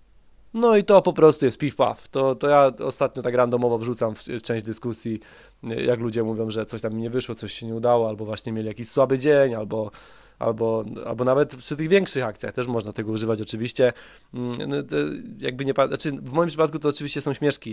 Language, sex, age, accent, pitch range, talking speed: Polish, male, 20-39, native, 115-135 Hz, 200 wpm